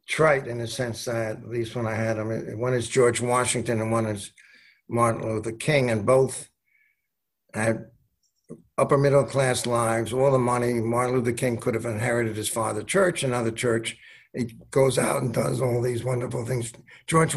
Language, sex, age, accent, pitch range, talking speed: English, male, 60-79, American, 115-135 Hz, 180 wpm